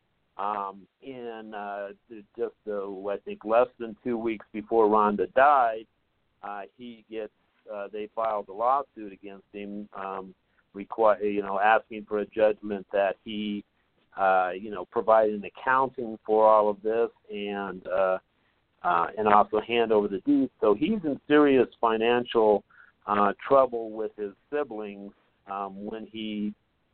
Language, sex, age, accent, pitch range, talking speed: English, male, 50-69, American, 105-120 Hz, 145 wpm